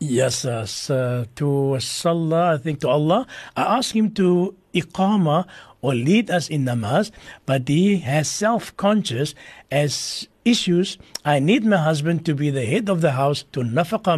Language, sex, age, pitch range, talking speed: English, male, 60-79, 140-190 Hz, 160 wpm